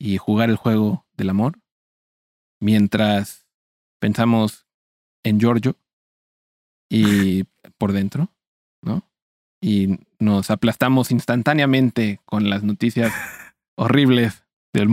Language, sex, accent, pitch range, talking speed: Spanish, male, Mexican, 105-150 Hz, 90 wpm